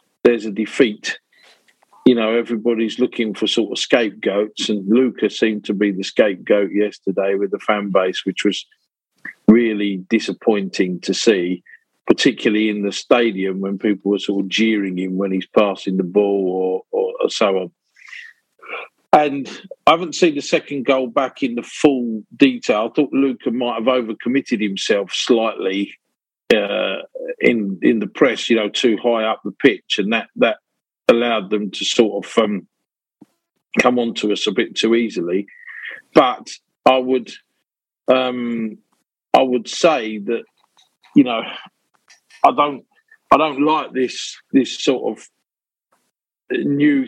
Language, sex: English, male